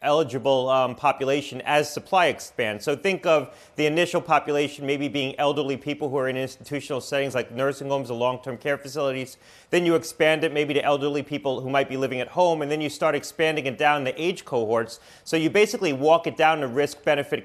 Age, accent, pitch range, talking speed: 30-49, American, 135-165 Hz, 205 wpm